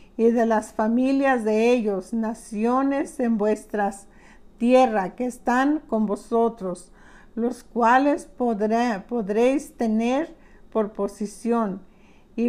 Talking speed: 105 wpm